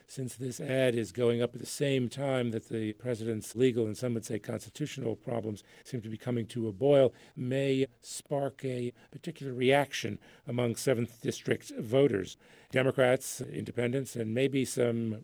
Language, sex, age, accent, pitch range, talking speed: English, male, 50-69, American, 115-135 Hz, 160 wpm